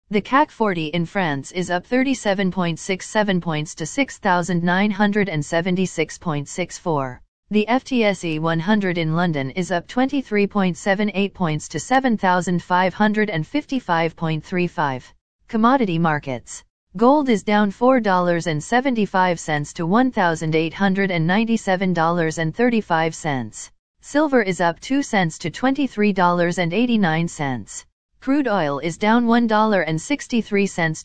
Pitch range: 165-225 Hz